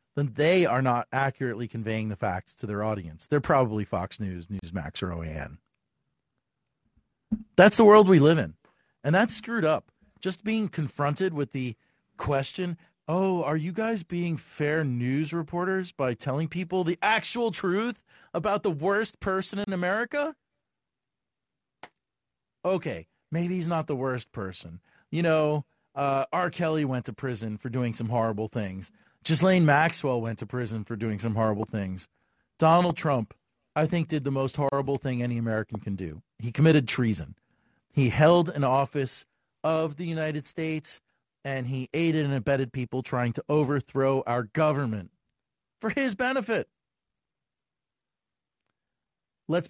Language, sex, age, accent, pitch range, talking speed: English, male, 40-59, American, 115-170 Hz, 150 wpm